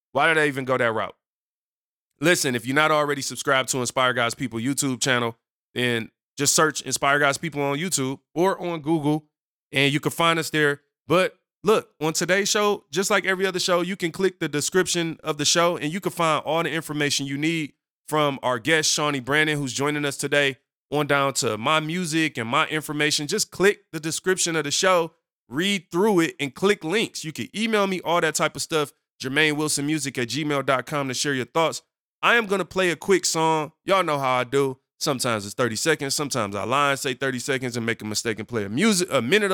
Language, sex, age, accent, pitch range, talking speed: English, male, 20-39, American, 135-170 Hz, 215 wpm